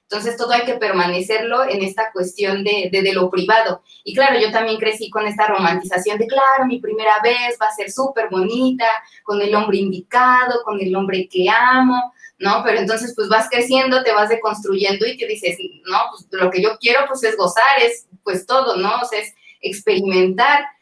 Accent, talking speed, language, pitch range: Mexican, 200 wpm, Spanish, 200-240 Hz